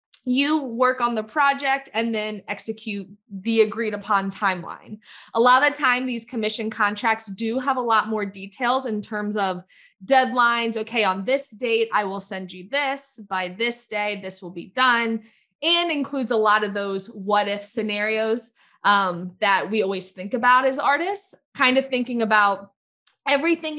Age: 20-39